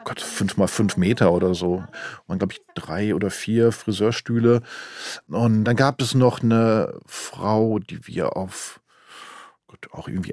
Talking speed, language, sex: 155 wpm, German, male